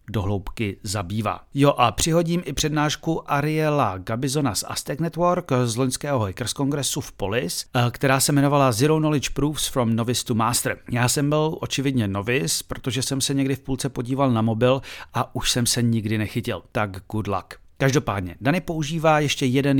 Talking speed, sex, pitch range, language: 170 wpm, male, 110-145 Hz, Czech